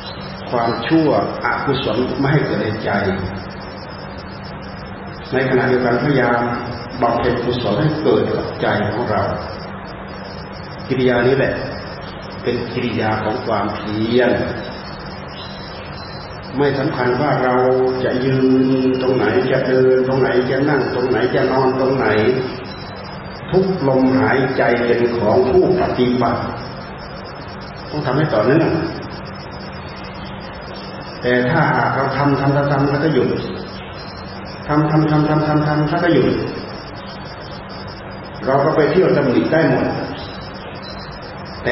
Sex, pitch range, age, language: male, 115-135 Hz, 30-49, Thai